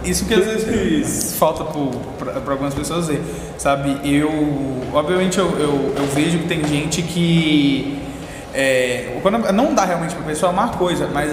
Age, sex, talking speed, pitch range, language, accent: 20-39, male, 155 wpm, 150-200 Hz, Portuguese, Brazilian